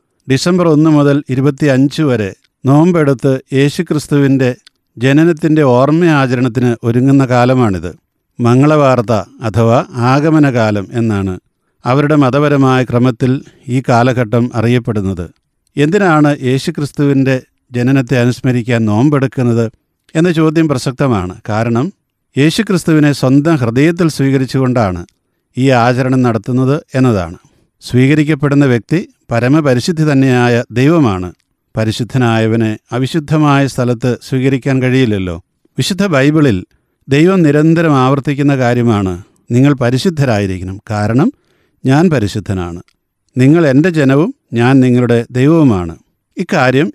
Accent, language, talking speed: native, Malayalam, 85 wpm